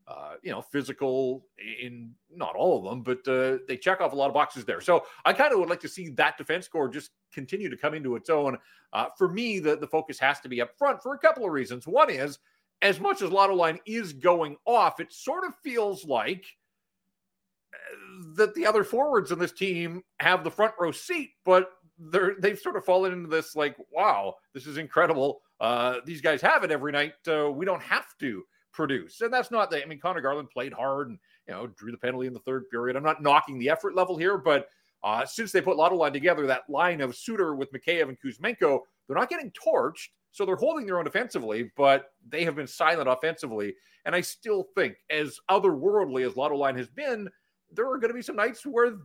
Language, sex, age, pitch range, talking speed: English, male, 40-59, 140-200 Hz, 225 wpm